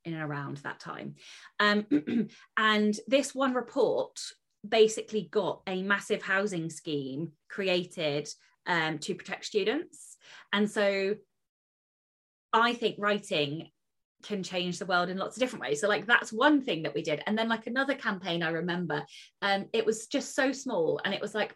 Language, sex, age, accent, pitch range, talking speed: English, female, 20-39, British, 160-215 Hz, 165 wpm